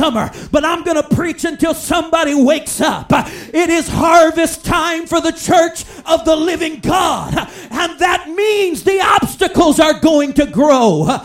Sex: male